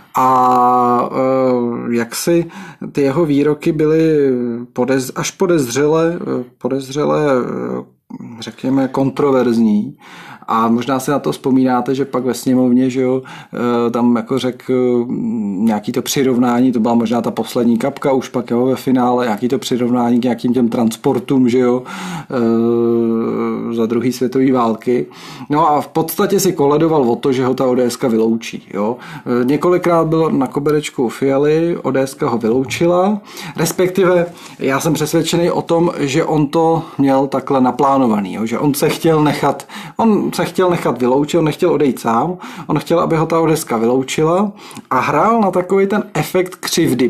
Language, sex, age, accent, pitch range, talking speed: Czech, male, 40-59, native, 120-160 Hz, 150 wpm